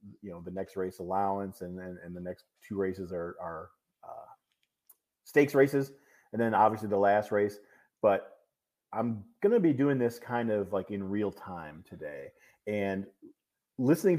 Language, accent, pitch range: English, American, 105-140 Hz